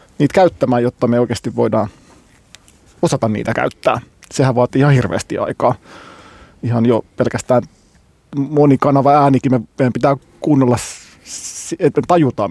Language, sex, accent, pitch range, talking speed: Finnish, male, native, 120-145 Hz, 120 wpm